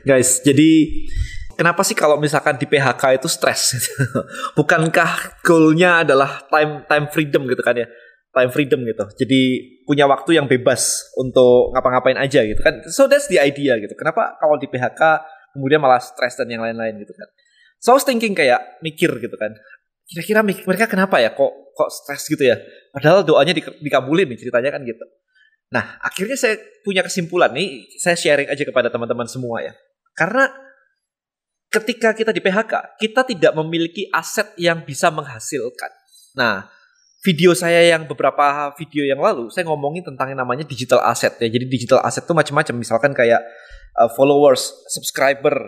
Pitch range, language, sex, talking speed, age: 135-195 Hz, Indonesian, male, 160 wpm, 20-39